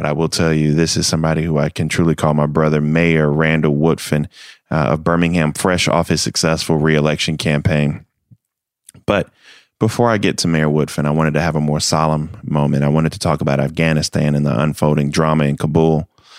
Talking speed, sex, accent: 200 wpm, male, American